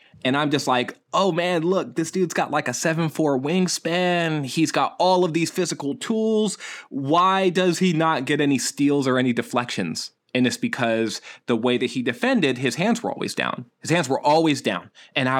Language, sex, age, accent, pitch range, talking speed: English, male, 20-39, American, 135-190 Hz, 200 wpm